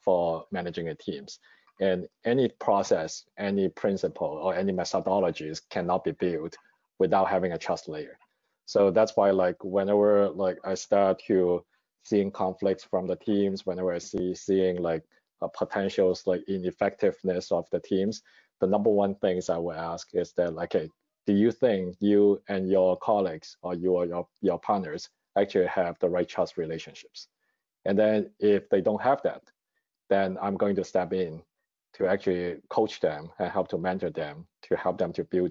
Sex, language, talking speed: male, English, 170 wpm